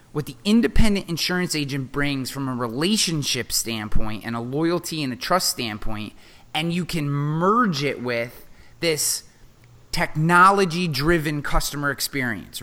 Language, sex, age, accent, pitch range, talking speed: English, male, 30-49, American, 130-190 Hz, 135 wpm